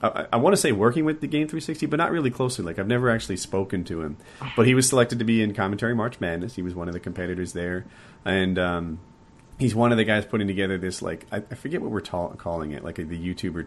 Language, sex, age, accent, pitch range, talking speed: English, male, 30-49, American, 85-115 Hz, 260 wpm